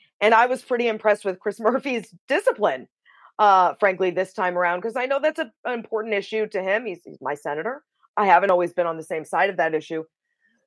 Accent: American